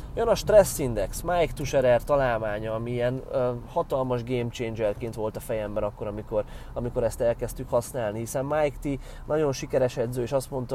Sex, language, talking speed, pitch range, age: male, Hungarian, 165 wpm, 120-140 Hz, 30-49